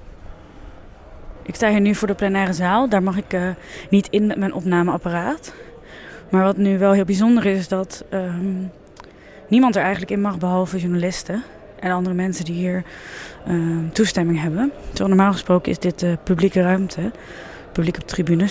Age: 20-39